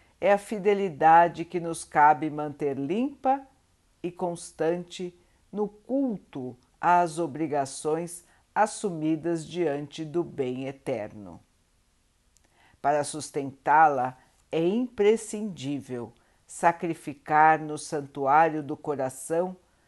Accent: Brazilian